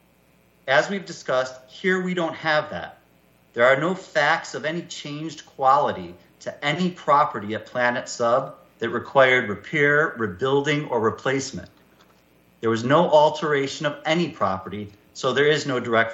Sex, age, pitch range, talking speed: male, 40-59, 105-150 Hz, 150 wpm